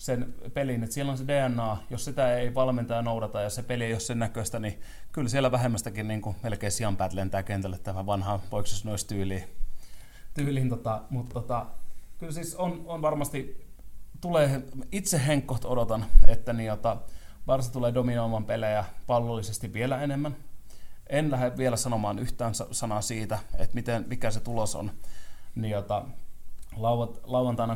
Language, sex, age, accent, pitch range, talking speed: Finnish, male, 30-49, native, 105-125 Hz, 145 wpm